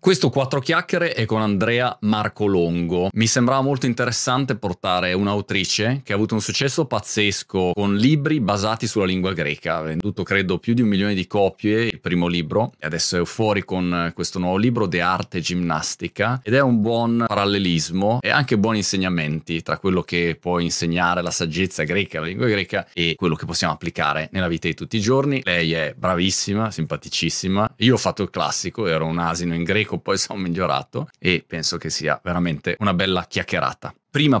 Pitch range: 85-110 Hz